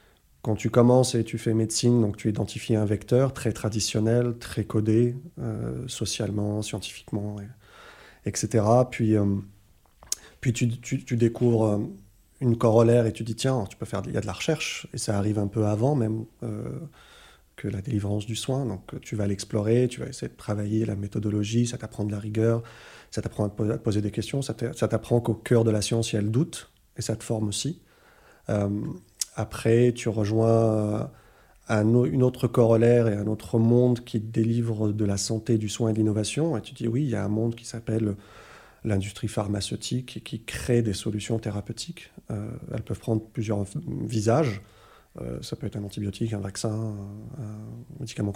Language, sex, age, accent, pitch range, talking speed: French, male, 30-49, French, 105-120 Hz, 190 wpm